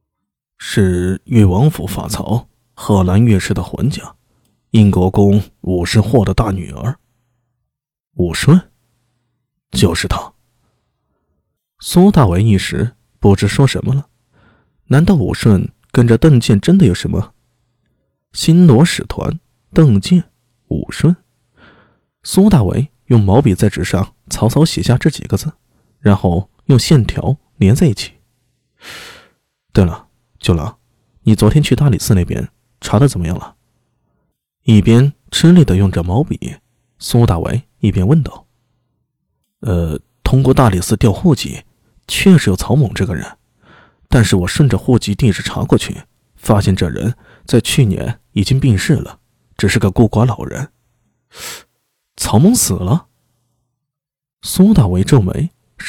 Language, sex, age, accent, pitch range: Chinese, male, 20-39, native, 100-140 Hz